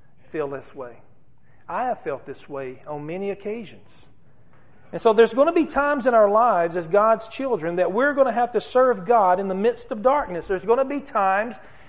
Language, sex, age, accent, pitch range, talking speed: English, male, 40-59, American, 170-230 Hz, 210 wpm